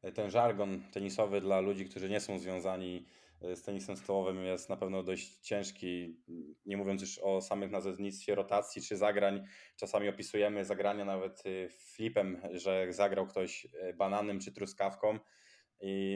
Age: 20-39